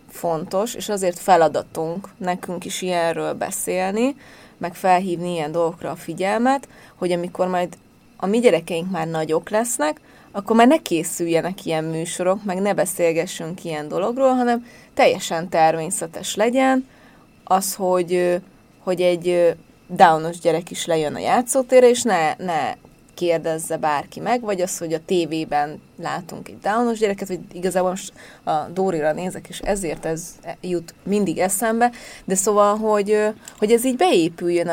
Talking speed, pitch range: 145 wpm, 165-210 Hz